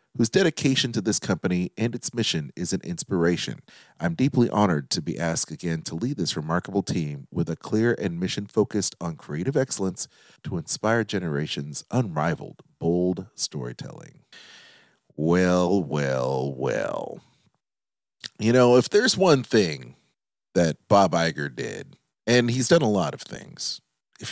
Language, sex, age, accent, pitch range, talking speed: English, male, 40-59, American, 80-115 Hz, 145 wpm